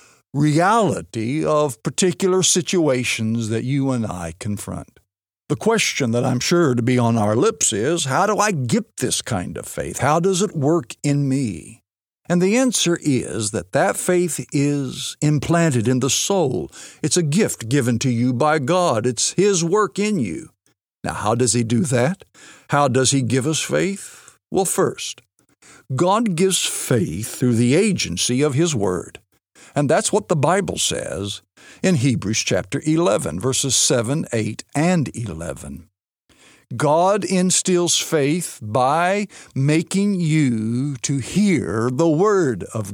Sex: male